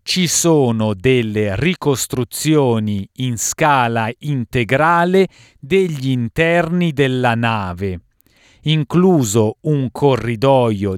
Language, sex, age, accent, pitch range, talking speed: Italian, male, 40-59, native, 115-165 Hz, 75 wpm